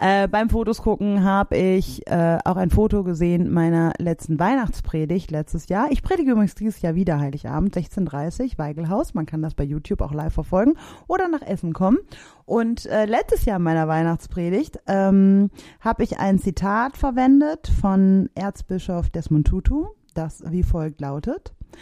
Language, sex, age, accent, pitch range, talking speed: German, female, 30-49, German, 170-220 Hz, 160 wpm